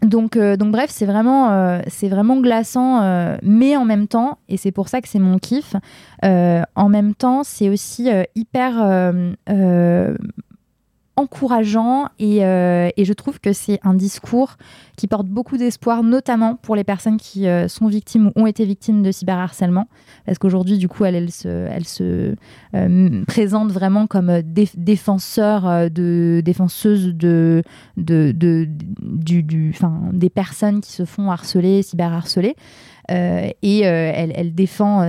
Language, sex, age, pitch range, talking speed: French, female, 20-39, 180-220 Hz, 165 wpm